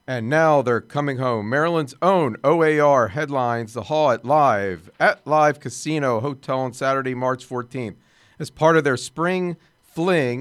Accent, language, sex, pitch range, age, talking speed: American, English, male, 130-165 Hz, 50-69, 155 wpm